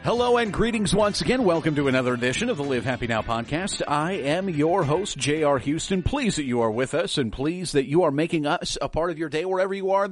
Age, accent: 40-59, American